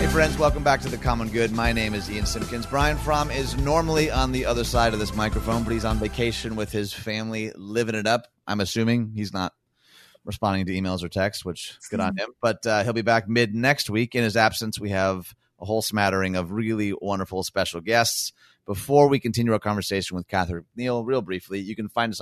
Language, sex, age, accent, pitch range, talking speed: English, male, 30-49, American, 100-120 Hz, 220 wpm